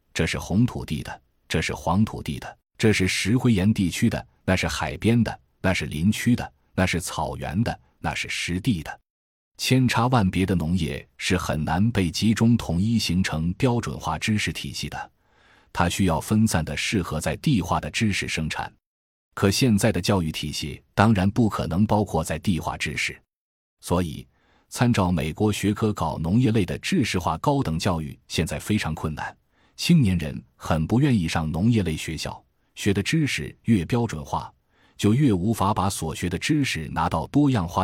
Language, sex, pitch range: Chinese, male, 80-115 Hz